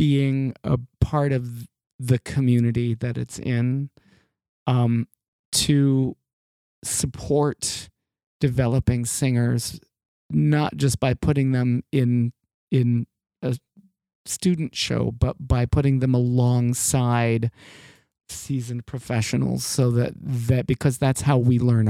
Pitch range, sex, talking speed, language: 110-130 Hz, male, 105 wpm, English